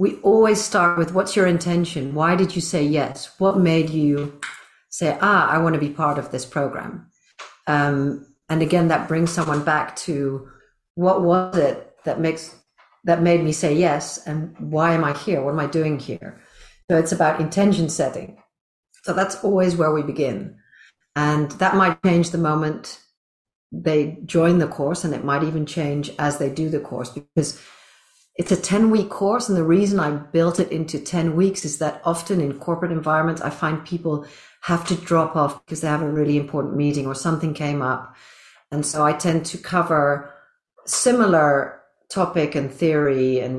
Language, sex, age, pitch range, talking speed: English, female, 50-69, 145-175 Hz, 185 wpm